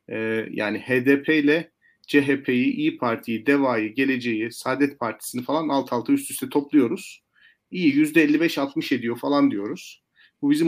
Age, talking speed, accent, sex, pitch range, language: 40-59, 130 wpm, native, male, 125-180 Hz, Turkish